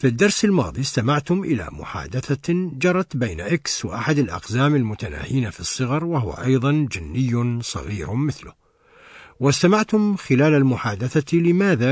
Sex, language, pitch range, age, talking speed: male, Arabic, 105-150 Hz, 60-79, 115 wpm